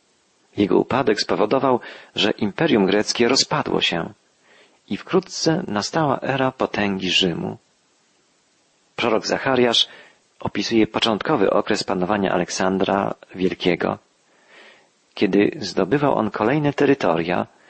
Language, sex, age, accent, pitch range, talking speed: Polish, male, 40-59, native, 95-125 Hz, 90 wpm